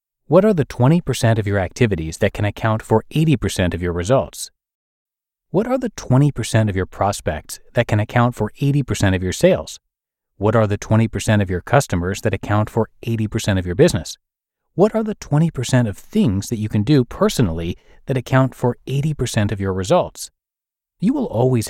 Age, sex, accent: 30-49, male, American